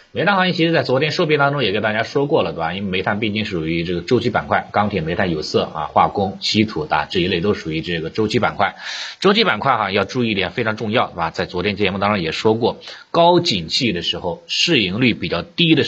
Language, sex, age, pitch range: Chinese, male, 30-49, 90-125 Hz